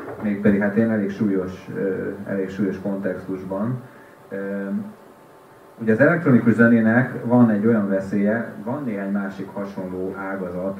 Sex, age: male, 30-49